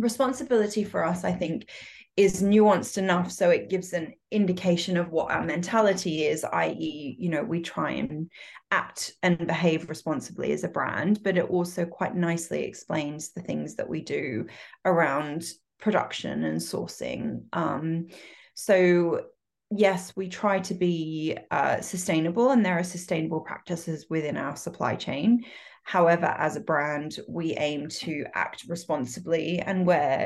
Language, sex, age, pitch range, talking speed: English, female, 20-39, 160-205 Hz, 150 wpm